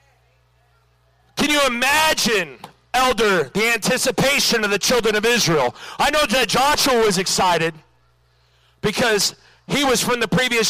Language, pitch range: English, 200-290 Hz